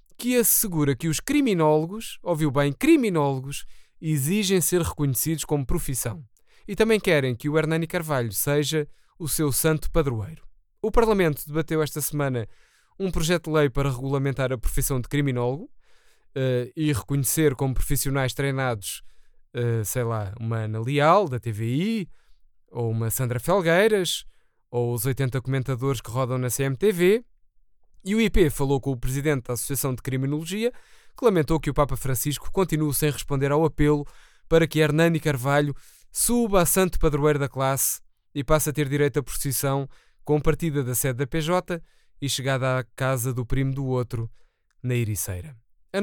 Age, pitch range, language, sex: 20-39, 130-160 Hz, Portuguese, male